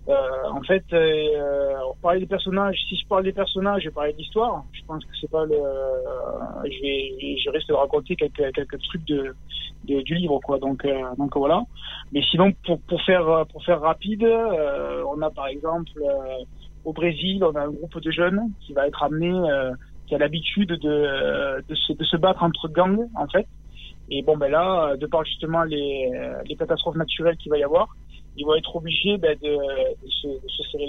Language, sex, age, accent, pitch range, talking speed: French, male, 20-39, French, 145-180 Hz, 210 wpm